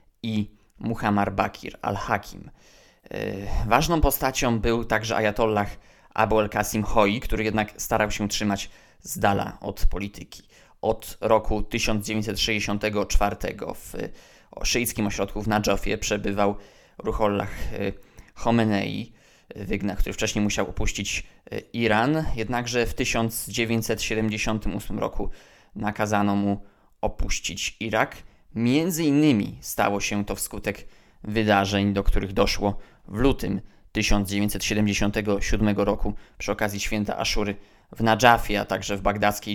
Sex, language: male, Polish